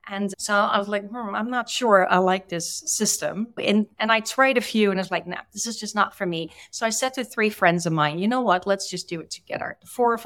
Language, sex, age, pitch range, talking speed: English, female, 30-49, 165-225 Hz, 280 wpm